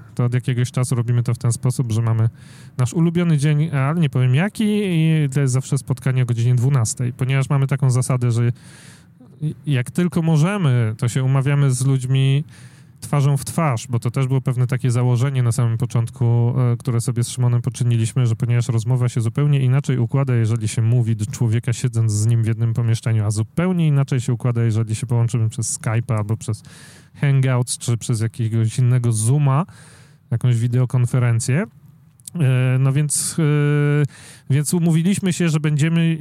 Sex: male